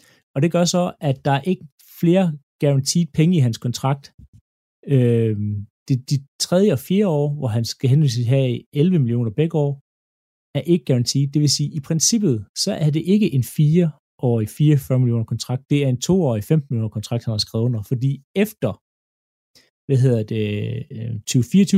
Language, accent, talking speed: Danish, native, 175 wpm